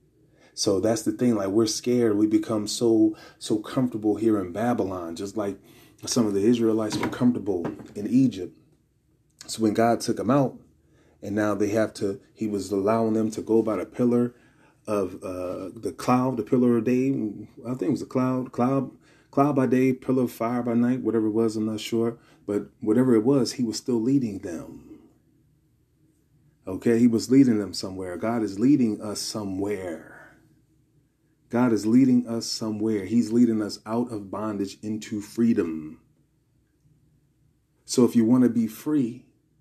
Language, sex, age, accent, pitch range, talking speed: English, male, 30-49, American, 105-125 Hz, 175 wpm